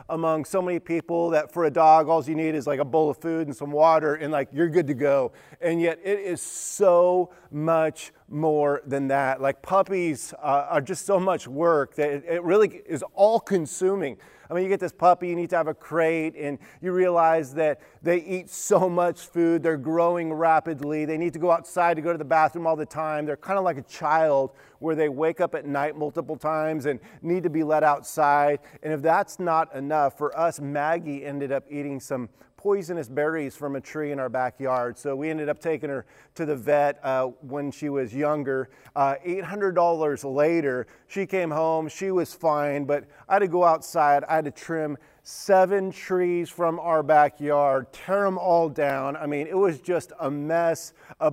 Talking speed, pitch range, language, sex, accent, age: 205 wpm, 145-170 Hz, English, male, American, 30-49